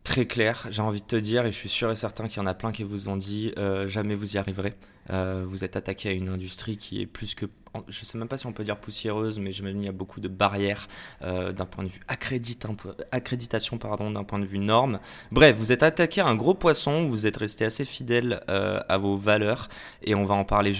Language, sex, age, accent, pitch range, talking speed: French, male, 20-39, French, 95-120 Hz, 260 wpm